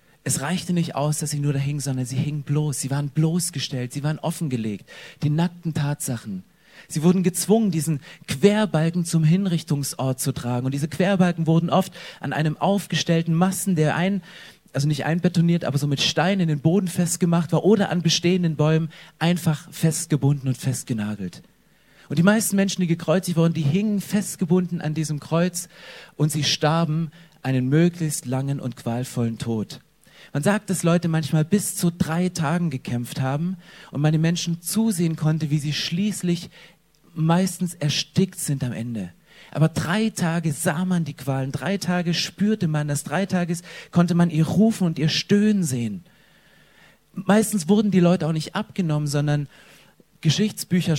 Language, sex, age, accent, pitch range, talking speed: German, male, 40-59, German, 145-180 Hz, 165 wpm